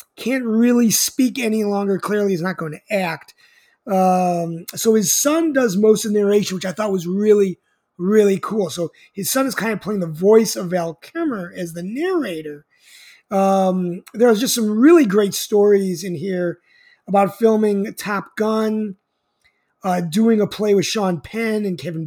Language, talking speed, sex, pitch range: English, 175 wpm, male, 185-230 Hz